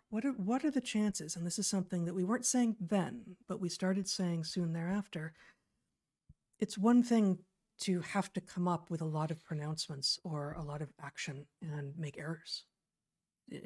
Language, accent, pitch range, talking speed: English, American, 165-200 Hz, 190 wpm